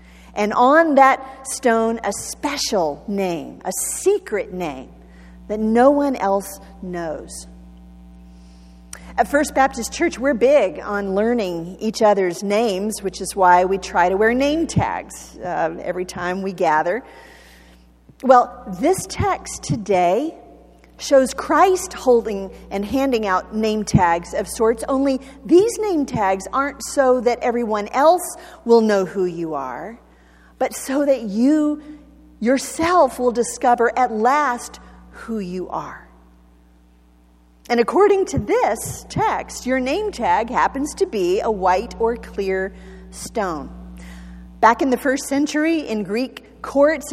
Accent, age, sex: American, 50-69, female